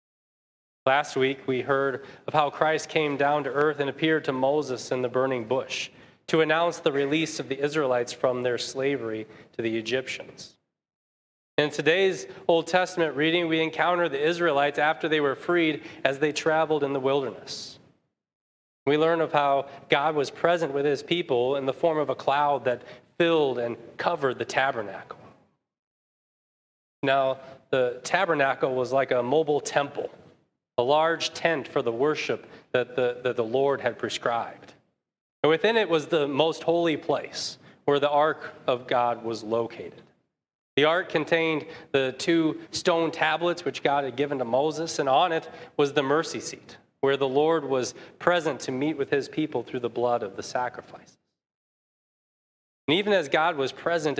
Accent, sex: American, male